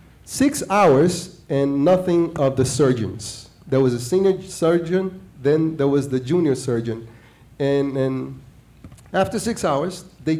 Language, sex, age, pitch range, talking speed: English, male, 30-49, 130-170 Hz, 140 wpm